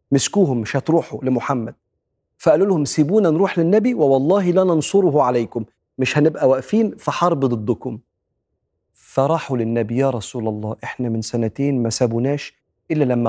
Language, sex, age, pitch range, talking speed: Arabic, male, 40-59, 115-145 Hz, 145 wpm